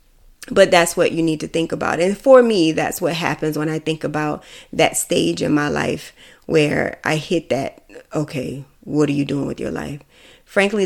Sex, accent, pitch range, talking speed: female, American, 160-175 Hz, 200 wpm